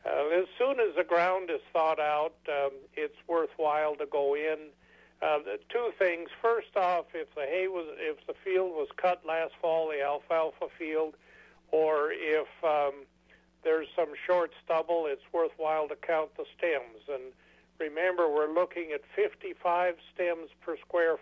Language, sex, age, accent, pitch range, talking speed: English, male, 50-69, American, 150-175 Hz, 160 wpm